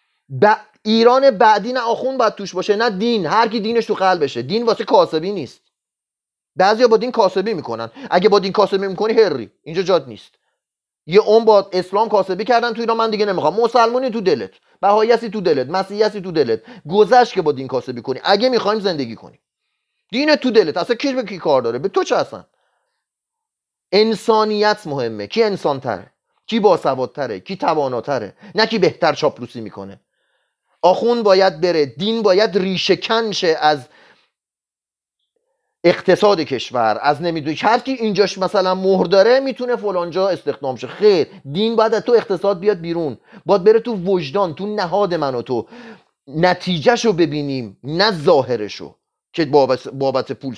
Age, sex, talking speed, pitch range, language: 30-49, male, 160 wpm, 180-230 Hz, Persian